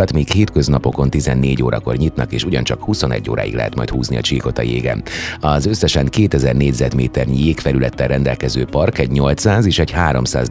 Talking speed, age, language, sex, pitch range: 155 wpm, 30-49, Hungarian, male, 65-75 Hz